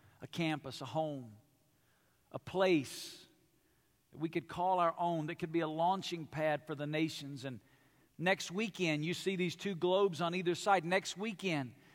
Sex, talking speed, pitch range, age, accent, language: male, 170 wpm, 150-215 Hz, 50-69, American, English